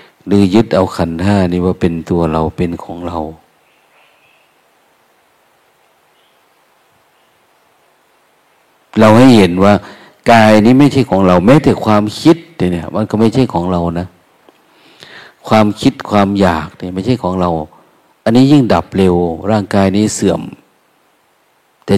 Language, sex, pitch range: Thai, male, 90-110 Hz